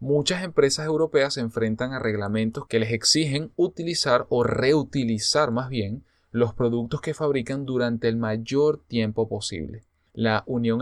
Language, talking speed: Spanish, 145 wpm